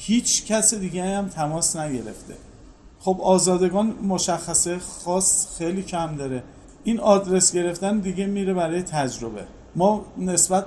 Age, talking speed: 40-59, 125 wpm